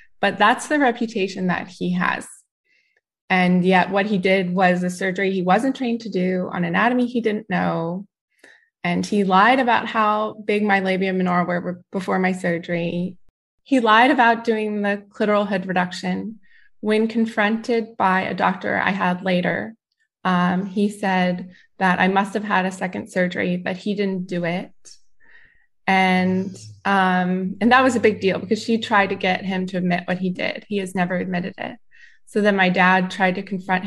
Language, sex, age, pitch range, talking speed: English, female, 20-39, 180-220 Hz, 180 wpm